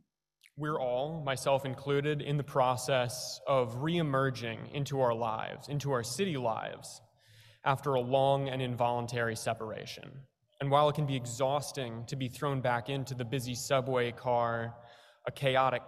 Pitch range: 125-150 Hz